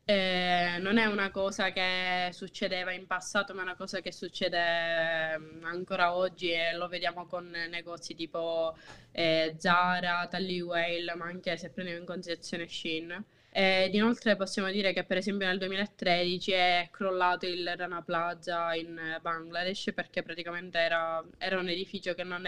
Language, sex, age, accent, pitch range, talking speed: Italian, female, 20-39, native, 170-195 Hz, 150 wpm